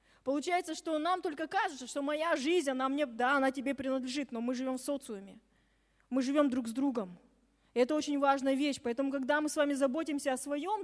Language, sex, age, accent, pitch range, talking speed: Russian, female, 20-39, native, 265-325 Hz, 200 wpm